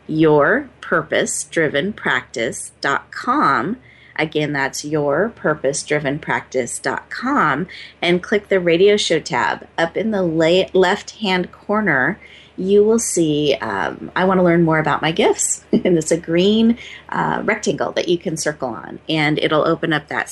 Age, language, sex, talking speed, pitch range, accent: 30-49, English, female, 140 wpm, 150-195 Hz, American